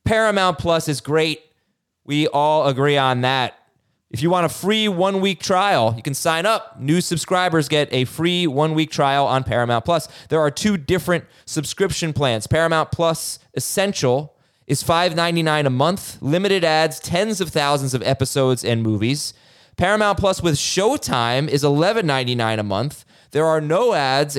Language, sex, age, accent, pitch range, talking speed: English, male, 20-39, American, 120-155 Hz, 155 wpm